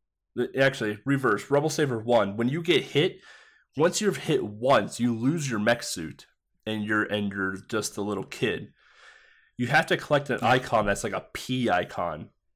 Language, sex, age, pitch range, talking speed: English, male, 20-39, 105-130 Hz, 175 wpm